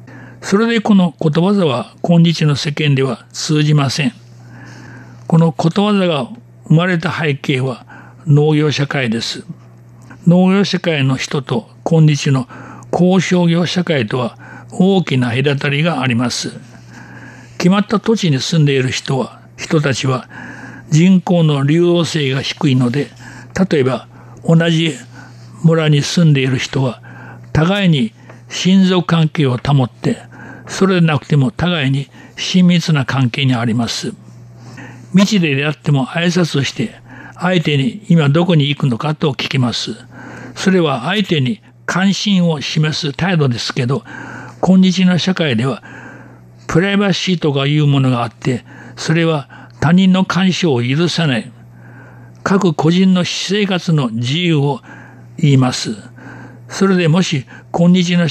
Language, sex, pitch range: Japanese, male, 125-175 Hz